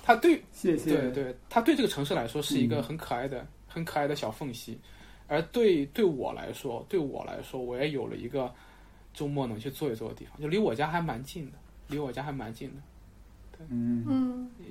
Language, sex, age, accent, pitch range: Chinese, male, 20-39, native, 120-170 Hz